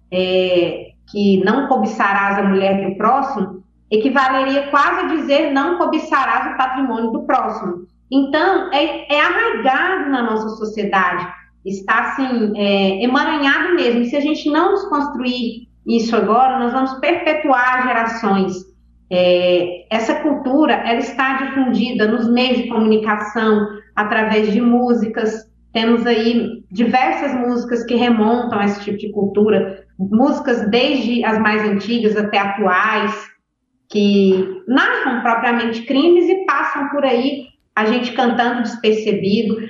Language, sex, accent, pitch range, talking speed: Portuguese, female, Brazilian, 210-265 Hz, 125 wpm